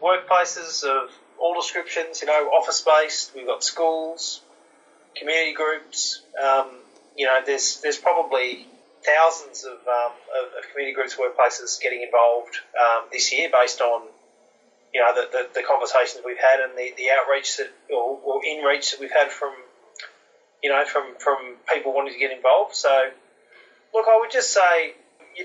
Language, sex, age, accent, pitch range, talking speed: English, male, 30-49, Australian, 130-200 Hz, 165 wpm